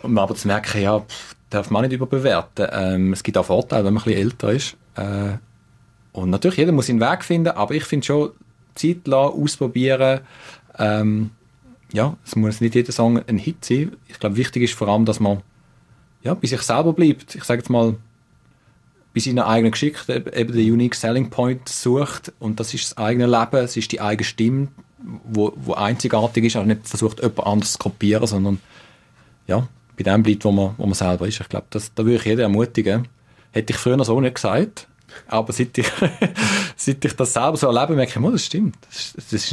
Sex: male